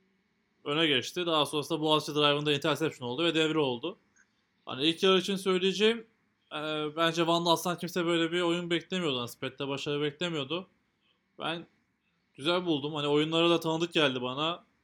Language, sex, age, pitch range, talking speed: Turkish, male, 20-39, 140-180 Hz, 155 wpm